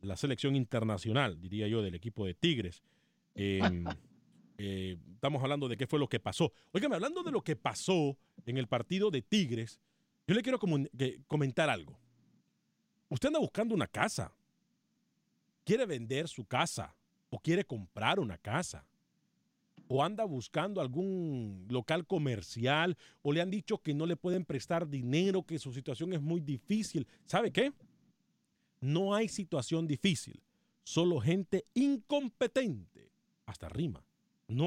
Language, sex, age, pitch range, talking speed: Spanish, male, 40-59, 135-200 Hz, 145 wpm